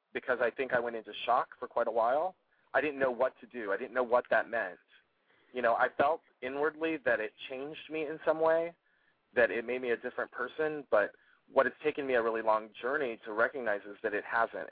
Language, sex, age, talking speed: English, male, 20-39, 230 wpm